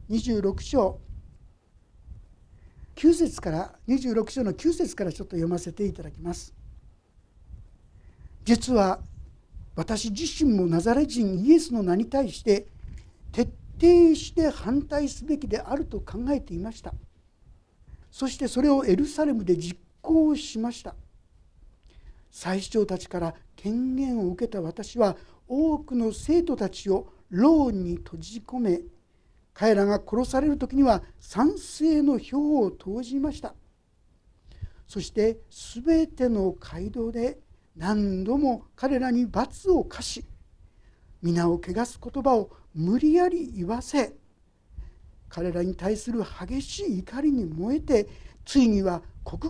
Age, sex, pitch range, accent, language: 50-69, male, 175-270 Hz, native, Japanese